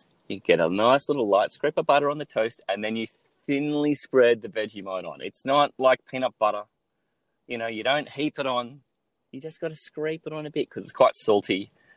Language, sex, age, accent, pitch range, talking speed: English, male, 30-49, Australian, 95-135 Hz, 225 wpm